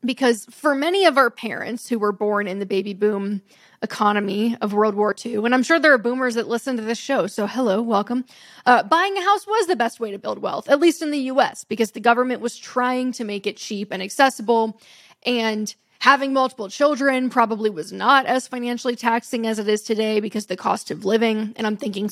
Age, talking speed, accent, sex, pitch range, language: 10-29, 220 wpm, American, female, 210-245 Hz, English